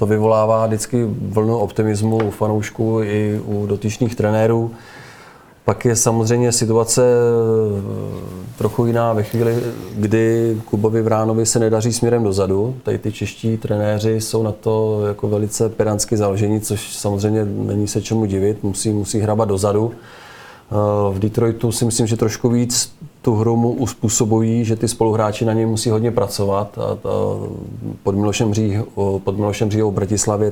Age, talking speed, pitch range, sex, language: 30-49, 140 wpm, 100-115 Hz, male, Czech